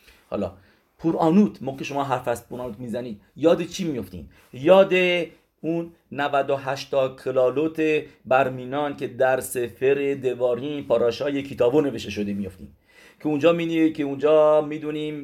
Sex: male